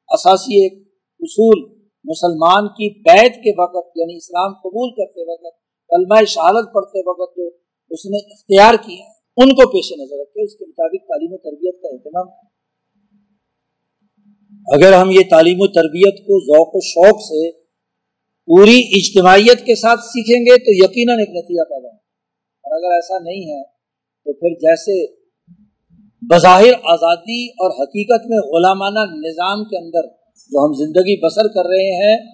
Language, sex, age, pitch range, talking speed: Urdu, male, 50-69, 165-220 Hz, 150 wpm